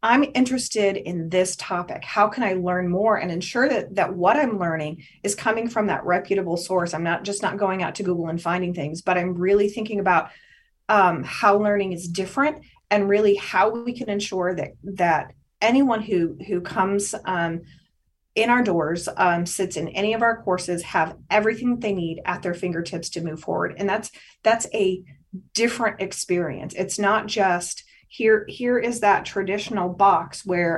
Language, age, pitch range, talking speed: English, 30-49, 180-215 Hz, 180 wpm